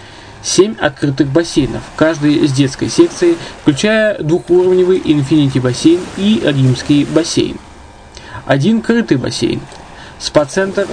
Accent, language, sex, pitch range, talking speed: native, Russian, male, 135-175 Hz, 100 wpm